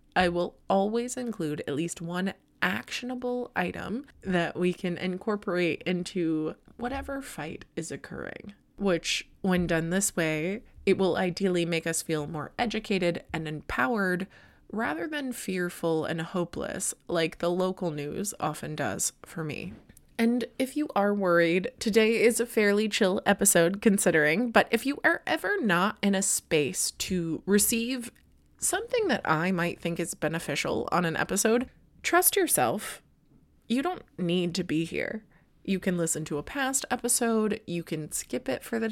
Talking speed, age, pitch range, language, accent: 155 wpm, 20-39, 170-230 Hz, English, American